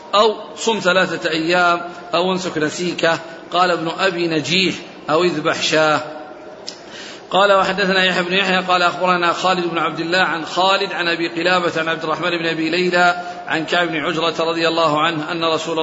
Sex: male